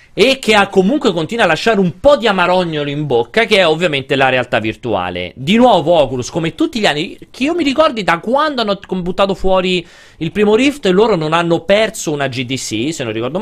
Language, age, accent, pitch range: Italian, 40-59, native, 120-190 Hz